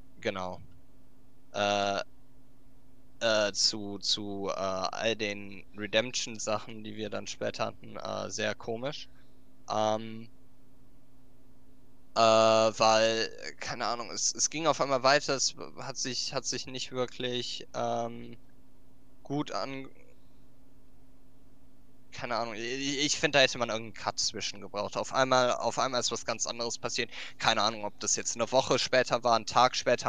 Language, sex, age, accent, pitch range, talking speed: German, male, 10-29, German, 115-130 Hz, 145 wpm